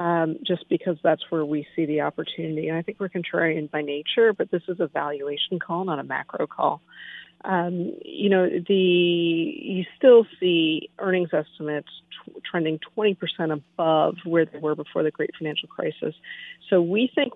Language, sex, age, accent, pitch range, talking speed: English, female, 40-59, American, 165-200 Hz, 175 wpm